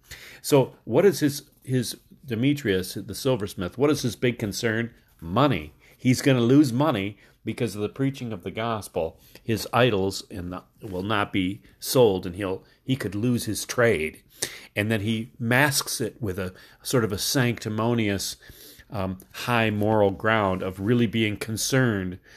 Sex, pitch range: male, 100-130 Hz